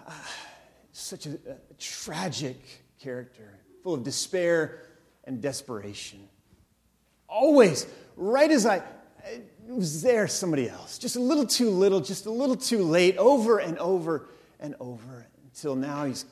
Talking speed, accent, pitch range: 135 wpm, American, 115-190 Hz